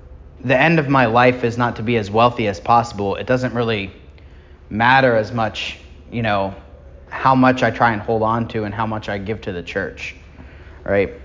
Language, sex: English, male